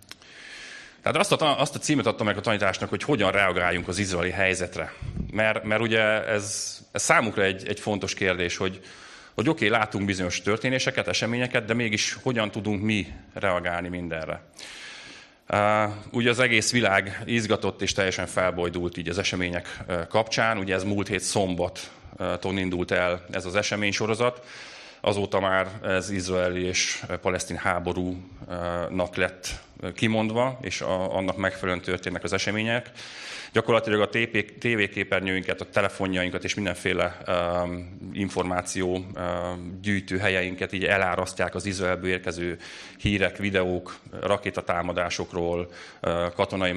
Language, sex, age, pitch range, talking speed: Hungarian, male, 30-49, 90-105 Hz, 120 wpm